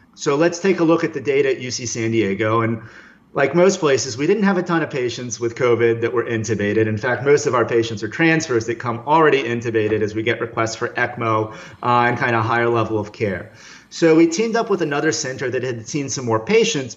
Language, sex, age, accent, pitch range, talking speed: English, male, 30-49, American, 115-155 Hz, 235 wpm